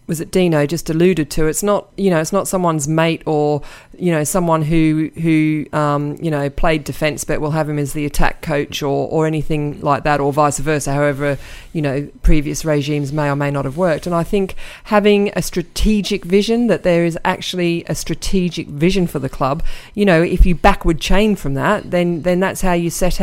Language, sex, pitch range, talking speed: English, female, 155-185 Hz, 215 wpm